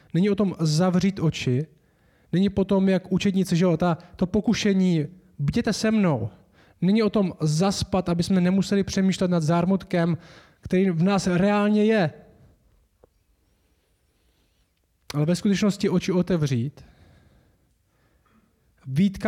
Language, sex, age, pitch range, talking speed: Czech, male, 20-39, 150-195 Hz, 115 wpm